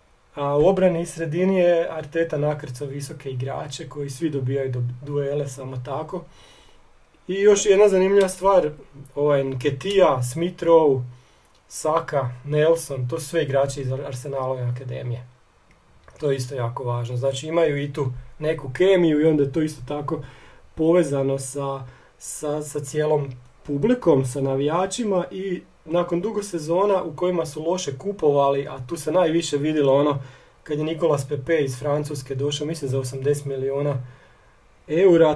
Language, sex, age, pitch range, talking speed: Croatian, male, 40-59, 135-165 Hz, 145 wpm